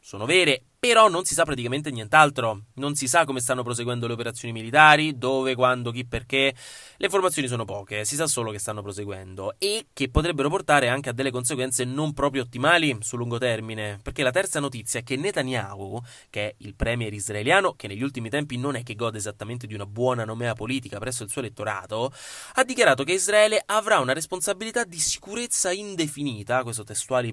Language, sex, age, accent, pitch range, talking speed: Italian, male, 20-39, native, 115-155 Hz, 190 wpm